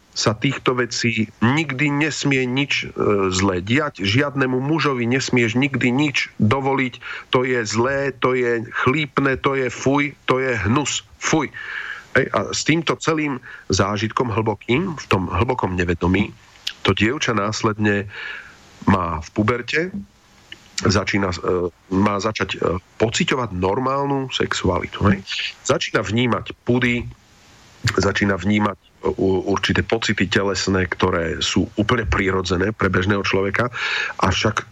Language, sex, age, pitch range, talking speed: Slovak, male, 40-59, 95-125 Hz, 120 wpm